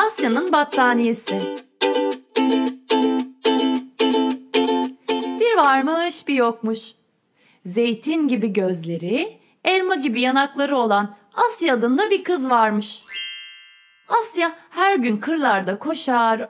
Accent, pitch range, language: native, 215-315 Hz, Turkish